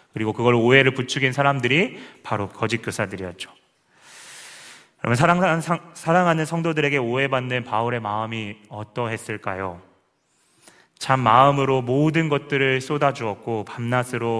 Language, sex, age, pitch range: Korean, male, 30-49, 105-130 Hz